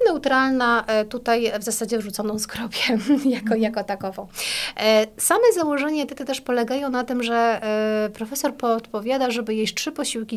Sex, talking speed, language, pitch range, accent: female, 135 wpm, Polish, 205-255 Hz, native